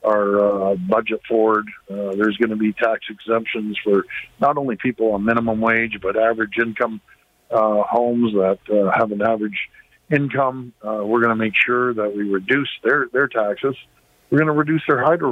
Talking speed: 185 wpm